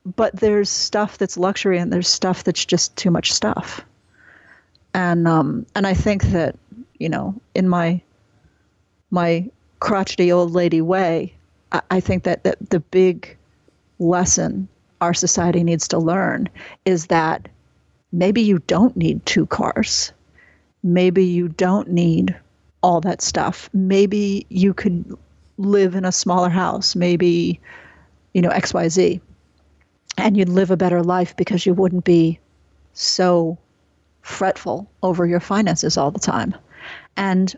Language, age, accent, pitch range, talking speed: English, 40-59, American, 170-205 Hz, 140 wpm